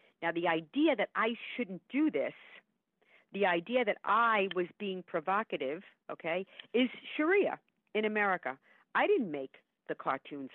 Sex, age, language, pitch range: female, 50-69, English, 165-250 Hz